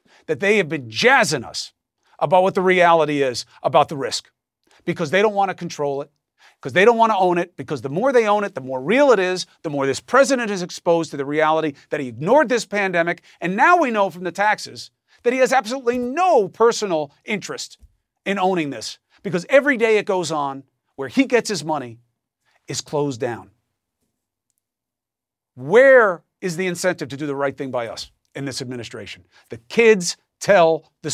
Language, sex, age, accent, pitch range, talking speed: English, male, 40-59, American, 140-210 Hz, 195 wpm